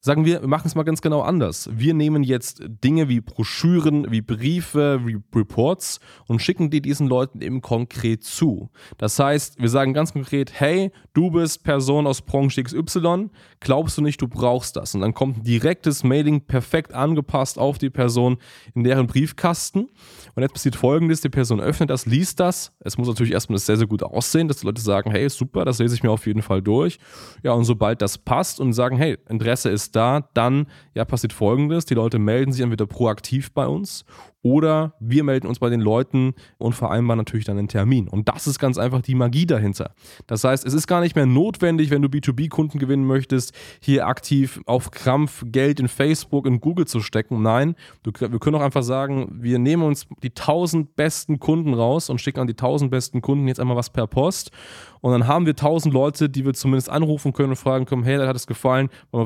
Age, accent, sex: 20-39, German, male